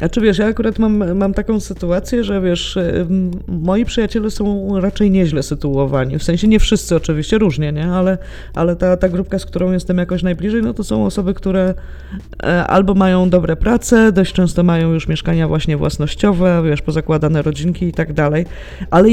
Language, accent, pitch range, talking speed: Polish, native, 160-200 Hz, 175 wpm